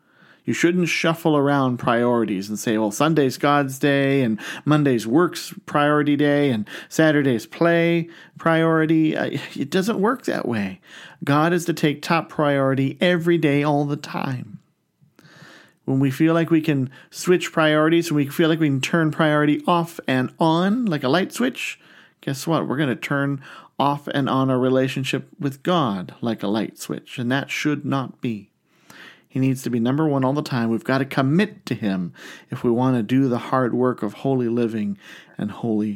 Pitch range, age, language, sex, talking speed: 120-160 Hz, 40-59, English, male, 185 wpm